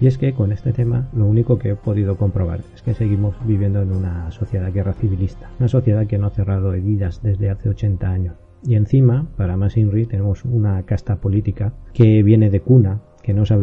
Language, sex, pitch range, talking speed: Spanish, male, 95-115 Hz, 210 wpm